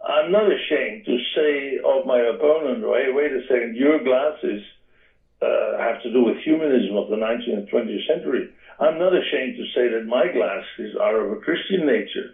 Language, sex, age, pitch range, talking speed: English, male, 60-79, 125-200 Hz, 190 wpm